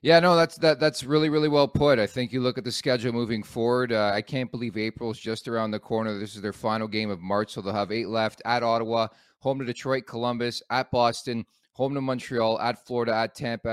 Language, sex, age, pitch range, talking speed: English, male, 30-49, 110-130 Hz, 235 wpm